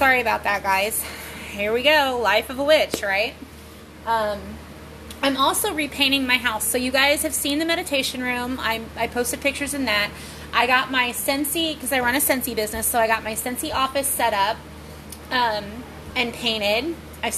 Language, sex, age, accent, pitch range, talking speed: English, female, 30-49, American, 215-280 Hz, 185 wpm